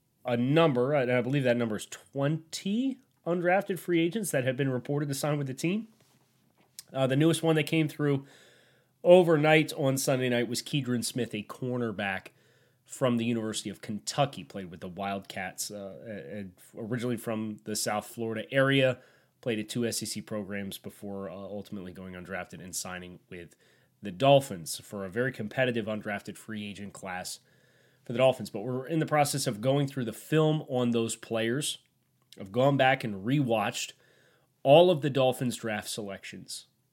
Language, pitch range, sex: English, 110-140 Hz, male